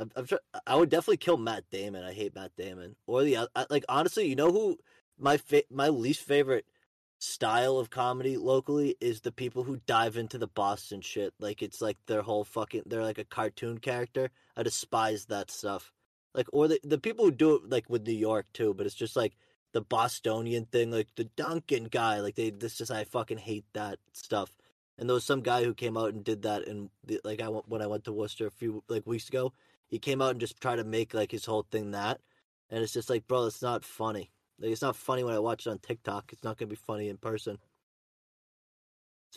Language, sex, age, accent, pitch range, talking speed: English, male, 20-39, American, 105-130 Hz, 230 wpm